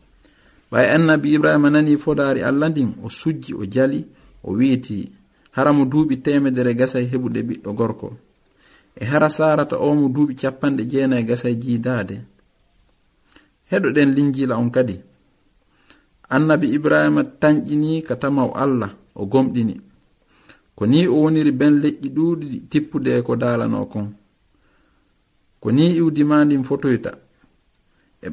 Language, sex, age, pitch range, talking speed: English, male, 50-69, 120-150 Hz, 120 wpm